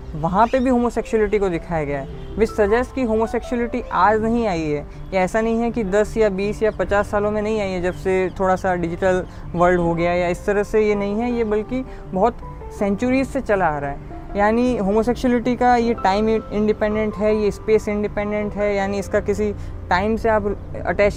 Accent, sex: native, female